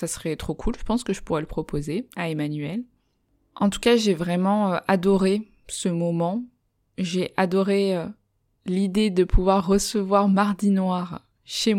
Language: French